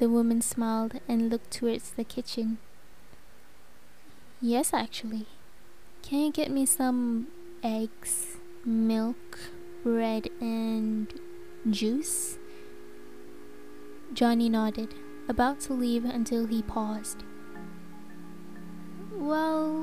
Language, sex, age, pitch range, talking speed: English, female, 10-29, 220-255 Hz, 90 wpm